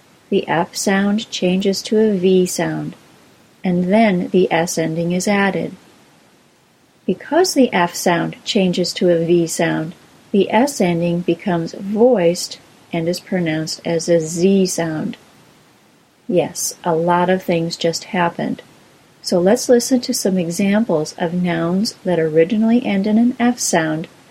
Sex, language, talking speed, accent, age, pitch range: female, English, 145 wpm, American, 40-59, 170-215 Hz